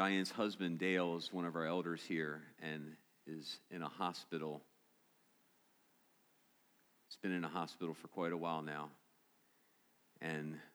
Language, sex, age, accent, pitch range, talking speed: English, male, 40-59, American, 80-95 Hz, 140 wpm